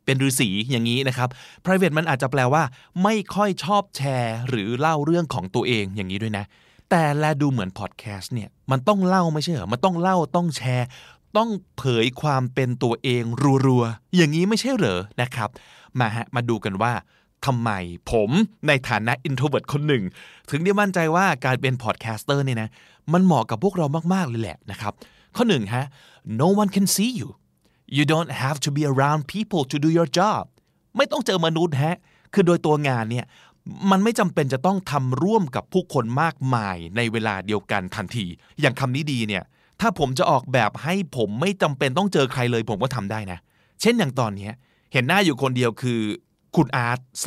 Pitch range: 120-165 Hz